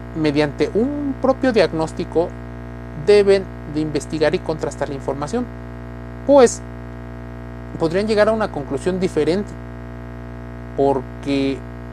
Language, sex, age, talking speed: Spanish, male, 40-59, 95 wpm